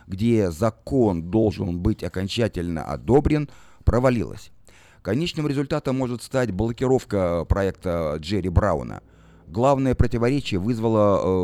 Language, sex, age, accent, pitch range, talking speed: Russian, male, 30-49, native, 95-120 Hz, 95 wpm